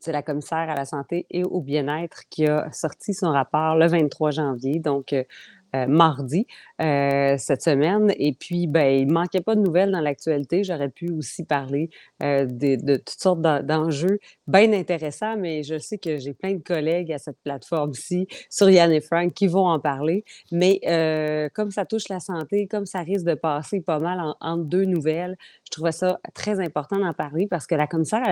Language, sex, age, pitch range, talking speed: French, female, 30-49, 150-185 Hz, 205 wpm